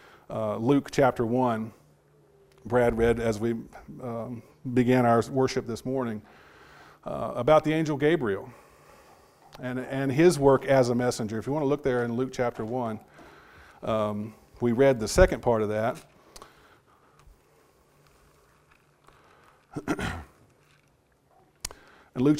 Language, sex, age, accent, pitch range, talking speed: English, male, 40-59, American, 120-150 Hz, 125 wpm